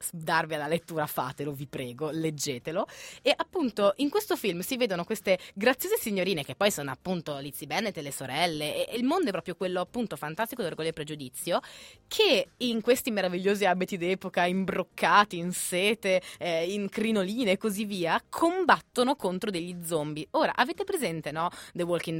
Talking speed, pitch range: 170 wpm, 155-215 Hz